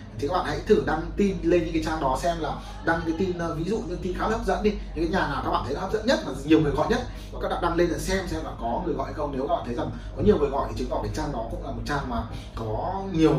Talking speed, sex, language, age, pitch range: 335 wpm, male, Vietnamese, 20-39, 130-195 Hz